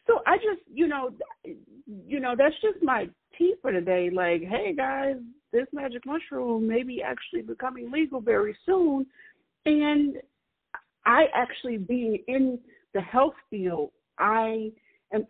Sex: female